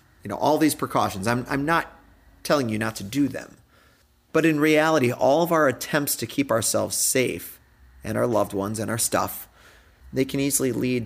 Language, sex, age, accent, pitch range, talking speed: English, male, 30-49, American, 95-140 Hz, 195 wpm